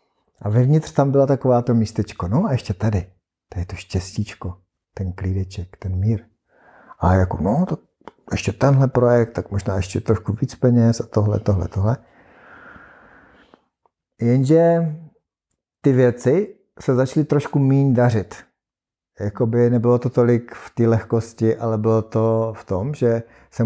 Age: 50-69